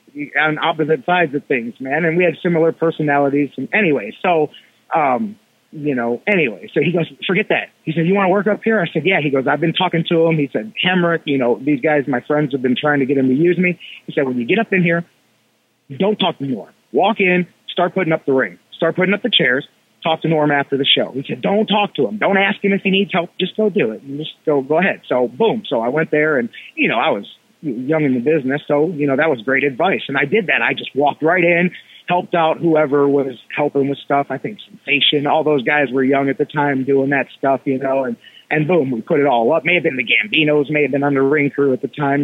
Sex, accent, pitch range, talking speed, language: male, American, 140-185 Hz, 265 wpm, English